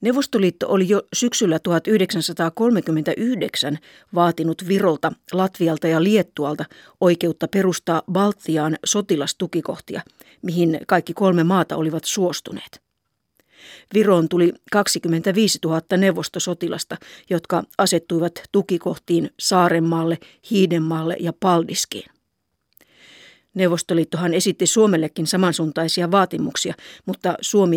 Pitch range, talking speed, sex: 165-195 Hz, 85 wpm, female